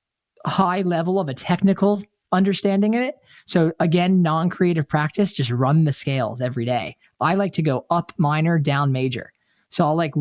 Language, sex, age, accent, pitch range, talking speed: English, male, 20-39, American, 140-185 Hz, 170 wpm